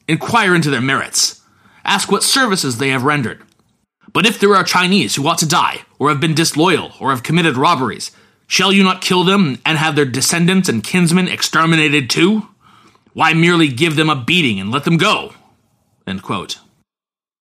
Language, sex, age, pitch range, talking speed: English, male, 30-49, 130-190 Hz, 175 wpm